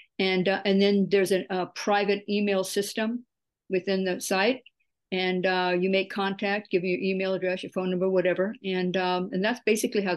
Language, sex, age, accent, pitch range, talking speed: English, female, 50-69, American, 180-205 Hz, 195 wpm